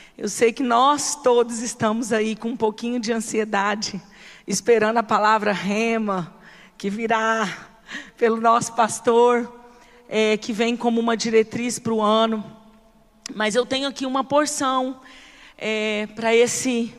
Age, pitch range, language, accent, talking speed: 40-59, 225-265 Hz, Portuguese, Brazilian, 130 wpm